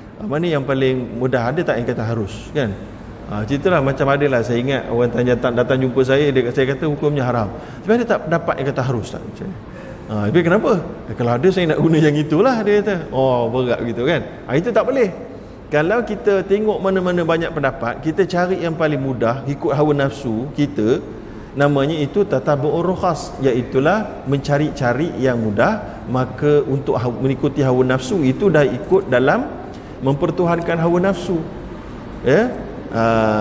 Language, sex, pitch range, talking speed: Malayalam, male, 125-175 Hz, 165 wpm